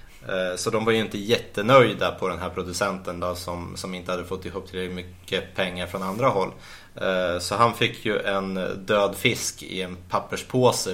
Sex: male